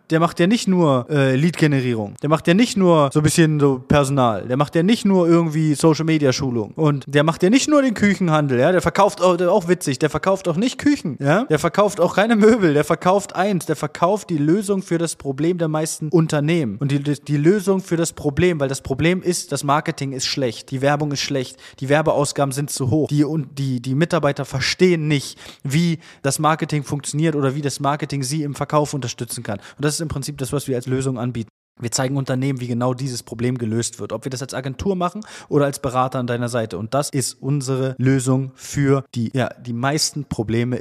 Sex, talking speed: male, 220 wpm